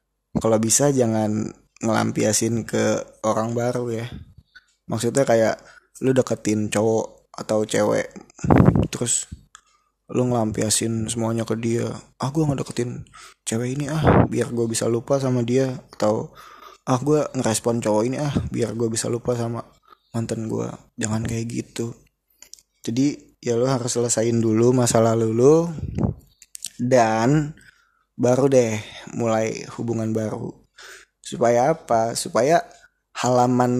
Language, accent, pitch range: Indonesian, native, 115-140 Hz